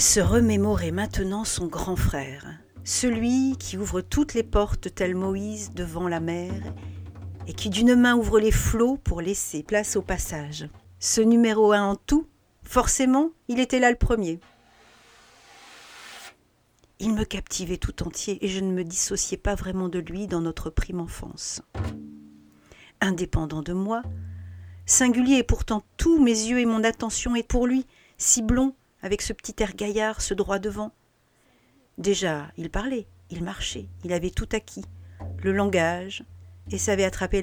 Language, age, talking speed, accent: French, 50-69, 155 wpm, French